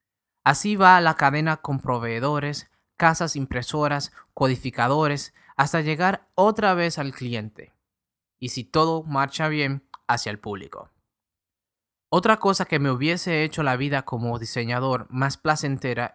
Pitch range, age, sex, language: 125-160 Hz, 20-39, male, Spanish